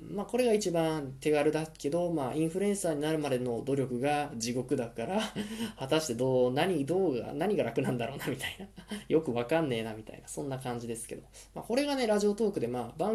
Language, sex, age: Japanese, male, 20-39